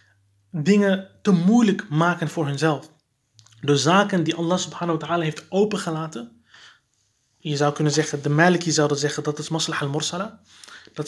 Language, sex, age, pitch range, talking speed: Dutch, male, 30-49, 150-195 Hz, 160 wpm